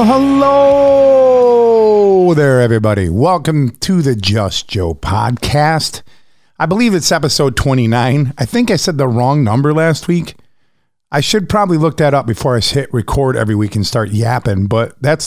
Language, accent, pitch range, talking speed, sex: English, American, 115-155 Hz, 155 wpm, male